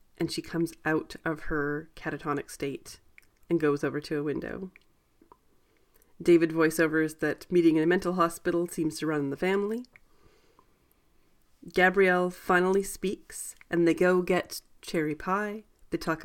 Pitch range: 155-185 Hz